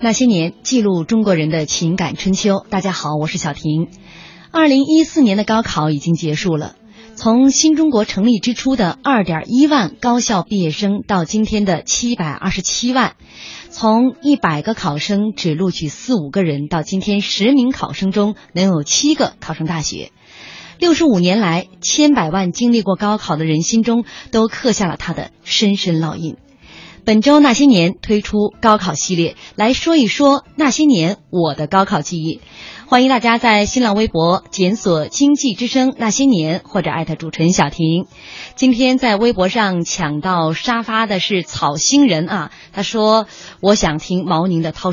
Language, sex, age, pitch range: Chinese, female, 20-39, 170-240 Hz